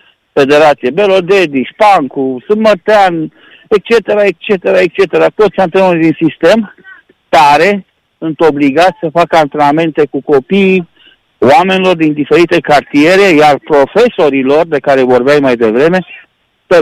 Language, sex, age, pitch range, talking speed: Romanian, male, 50-69, 150-195 Hz, 115 wpm